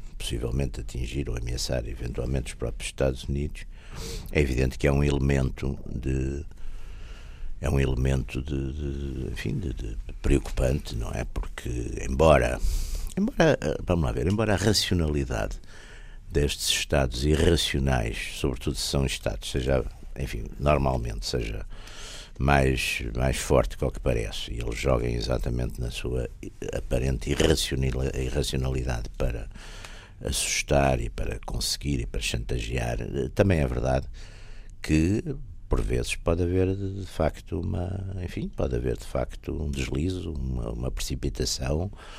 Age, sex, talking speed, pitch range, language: 60-79, male, 130 wpm, 65-85 Hz, Portuguese